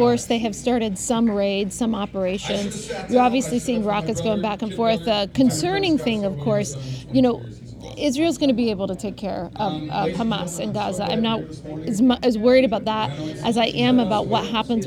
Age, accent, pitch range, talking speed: 30-49, American, 205-245 Hz, 200 wpm